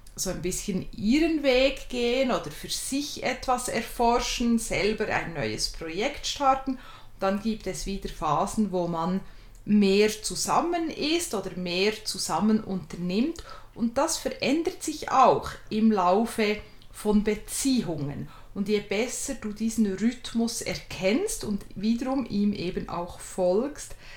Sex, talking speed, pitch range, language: female, 130 wpm, 190-255 Hz, German